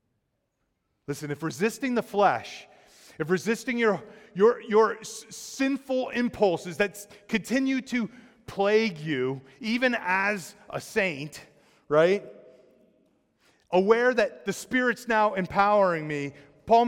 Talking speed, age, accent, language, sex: 110 wpm, 30-49, American, English, male